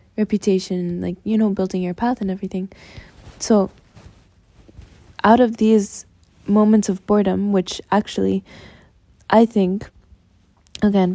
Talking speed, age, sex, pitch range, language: 115 wpm, 10-29, female, 175-210 Hz, English